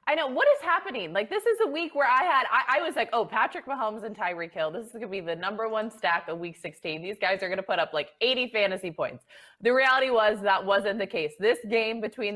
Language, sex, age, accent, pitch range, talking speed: English, female, 20-39, American, 160-225 Hz, 270 wpm